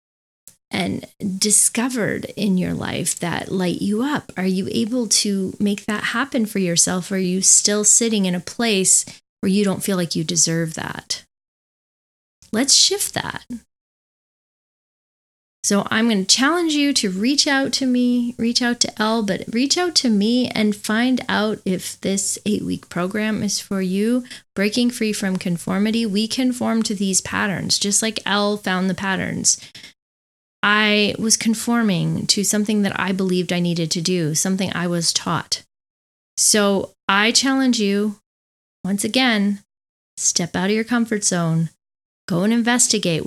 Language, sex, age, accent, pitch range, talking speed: English, female, 20-39, American, 185-225 Hz, 160 wpm